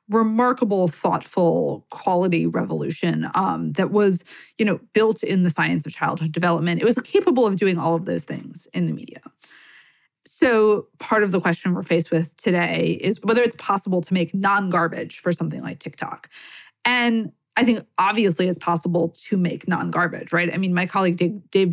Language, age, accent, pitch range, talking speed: English, 20-39, American, 170-215 Hz, 175 wpm